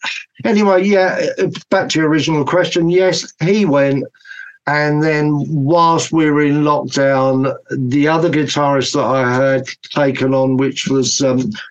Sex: male